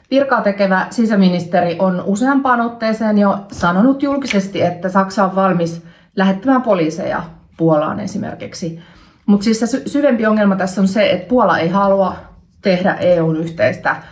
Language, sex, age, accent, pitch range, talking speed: Finnish, female, 30-49, native, 170-215 Hz, 130 wpm